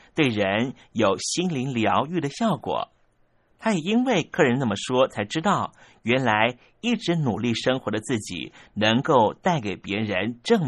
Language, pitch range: Chinese, 115-155 Hz